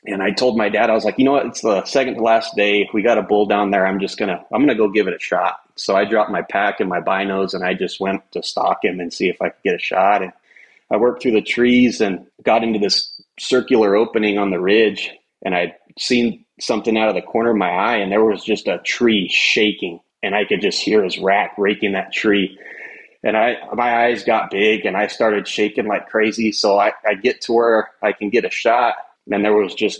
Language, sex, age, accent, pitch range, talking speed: English, male, 30-49, American, 100-115 Hz, 260 wpm